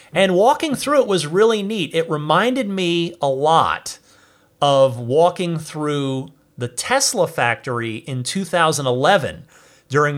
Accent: American